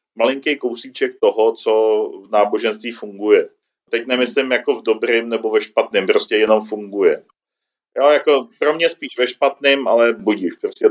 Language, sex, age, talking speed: Czech, male, 40-59, 155 wpm